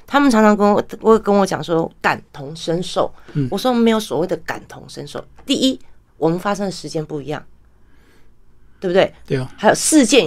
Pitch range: 160-230 Hz